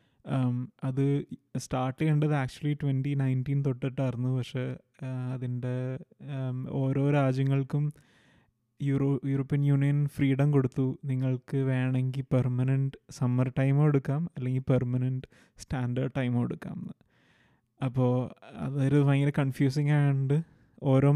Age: 20-39